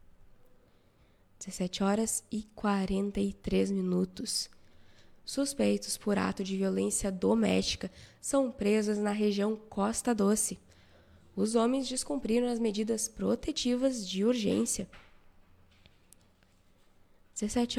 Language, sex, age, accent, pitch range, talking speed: Portuguese, female, 10-29, Brazilian, 185-245 Hz, 90 wpm